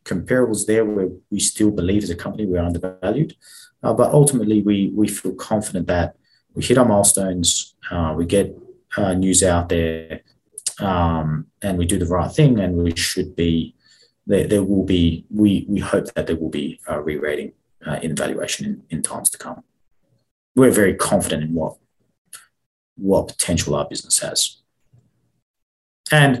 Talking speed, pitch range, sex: 170 wpm, 85-105 Hz, male